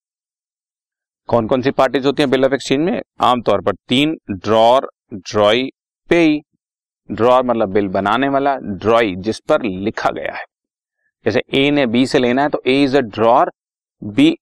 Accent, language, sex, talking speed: native, Hindi, male, 165 wpm